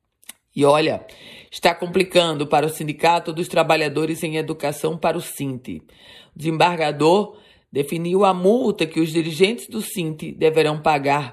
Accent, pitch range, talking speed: Brazilian, 155-185 Hz, 130 wpm